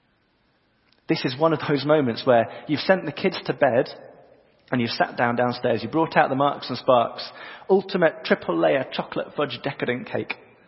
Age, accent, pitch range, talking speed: 30-49, British, 110-155 Hz, 180 wpm